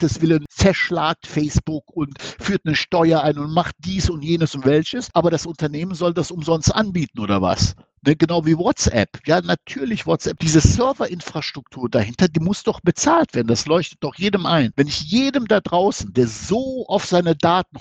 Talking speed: 180 wpm